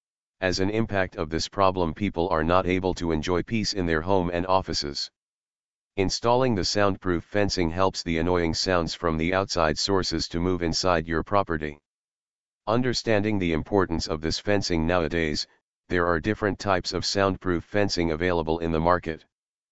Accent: American